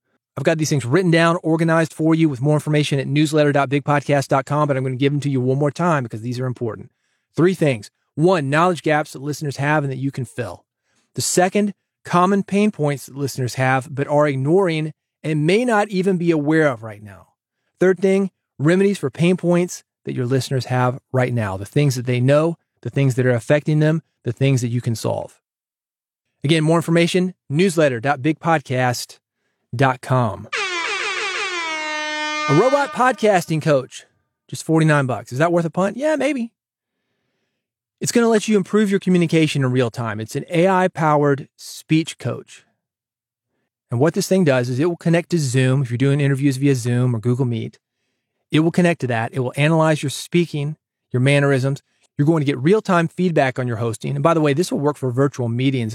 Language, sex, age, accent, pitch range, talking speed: English, male, 30-49, American, 130-170 Hz, 190 wpm